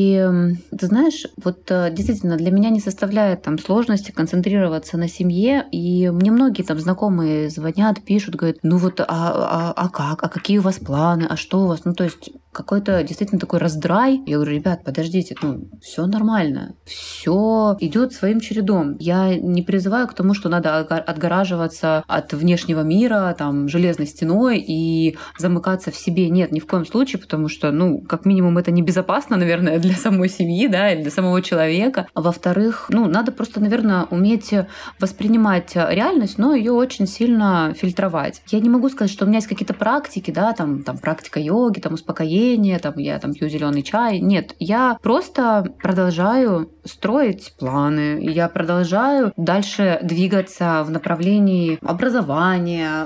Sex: female